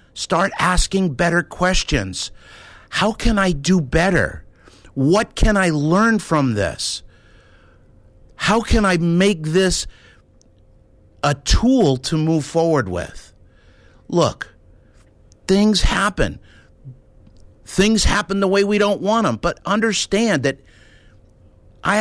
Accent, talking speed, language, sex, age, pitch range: American, 110 wpm, English, male, 50-69, 105-175 Hz